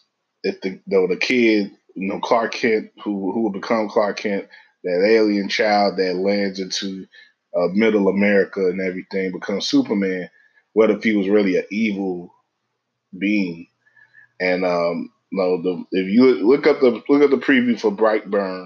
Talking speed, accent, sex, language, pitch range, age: 165 wpm, American, male, English, 95-110 Hz, 20-39